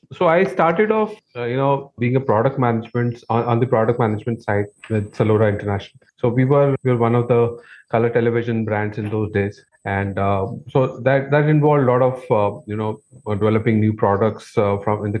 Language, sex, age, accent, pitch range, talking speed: English, male, 30-49, Indian, 110-130 Hz, 215 wpm